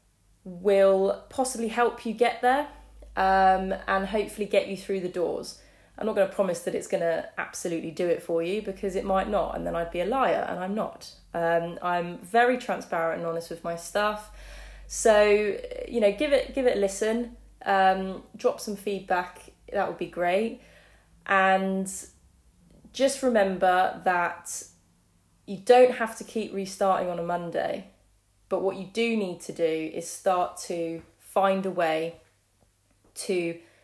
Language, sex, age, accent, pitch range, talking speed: English, female, 20-39, British, 165-205 Hz, 165 wpm